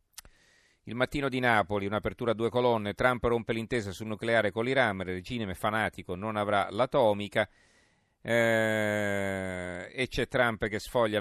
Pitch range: 90-110 Hz